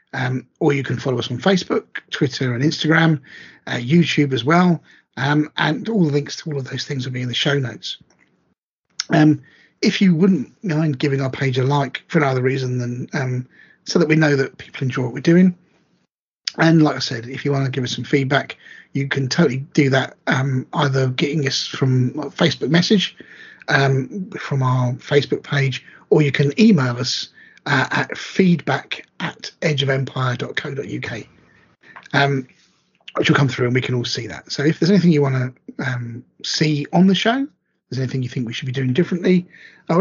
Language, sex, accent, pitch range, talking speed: English, male, British, 130-160 Hz, 190 wpm